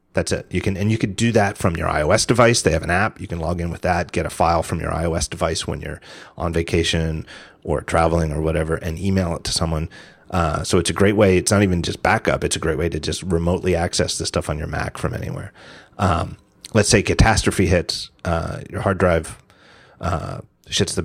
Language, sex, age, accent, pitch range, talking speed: English, male, 30-49, American, 85-105 Hz, 230 wpm